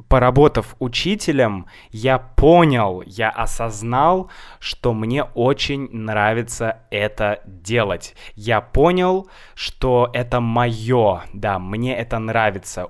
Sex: male